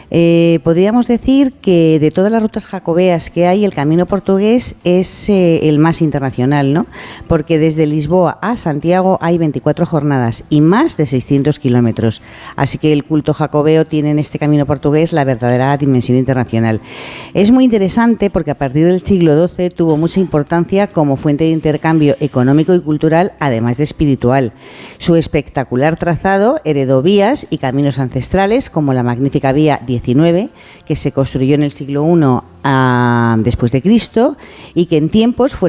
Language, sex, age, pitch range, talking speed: Spanish, female, 50-69, 135-180 Hz, 160 wpm